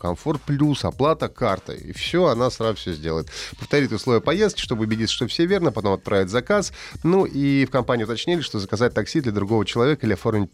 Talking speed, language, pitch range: 195 wpm, Russian, 100-145 Hz